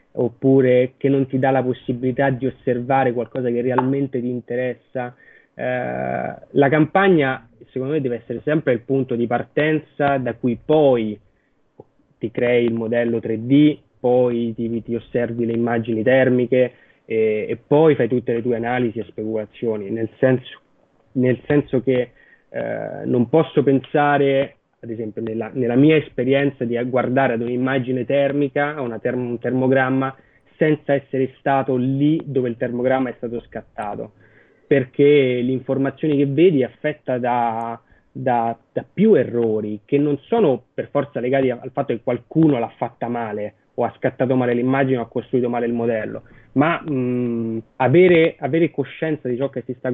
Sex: male